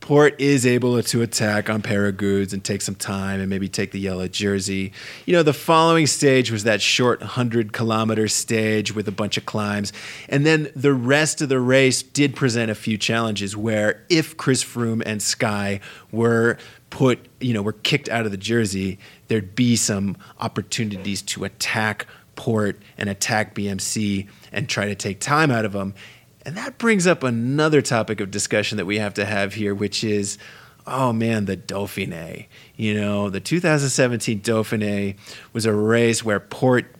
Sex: male